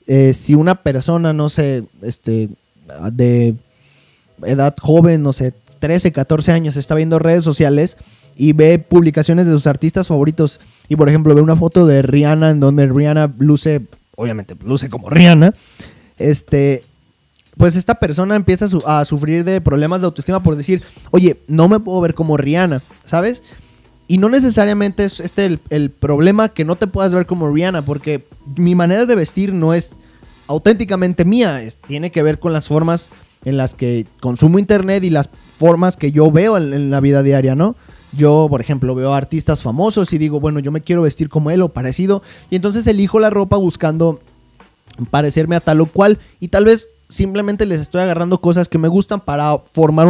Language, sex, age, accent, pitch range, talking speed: Spanish, male, 20-39, Mexican, 145-180 Hz, 185 wpm